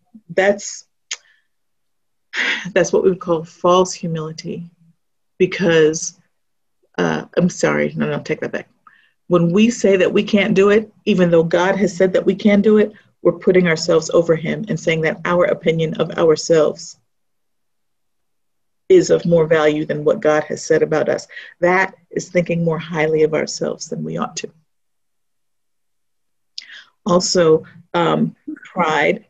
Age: 50-69